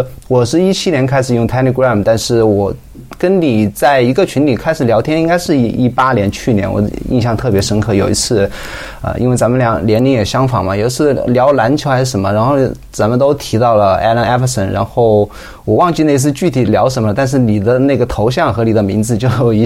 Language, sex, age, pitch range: Chinese, male, 20-39, 105-130 Hz